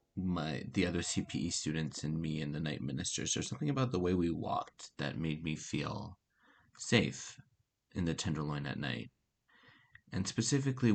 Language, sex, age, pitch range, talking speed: English, male, 30-49, 80-100 Hz, 165 wpm